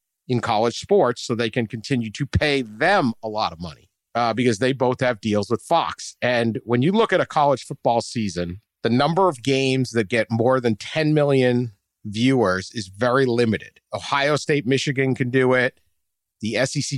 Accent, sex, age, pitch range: American, male, 50-69, 110-140 Hz